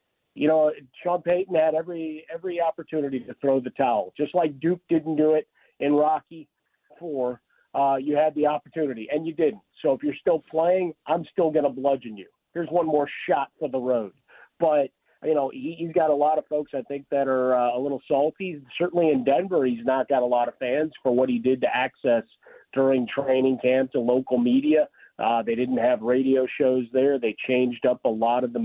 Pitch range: 120-150 Hz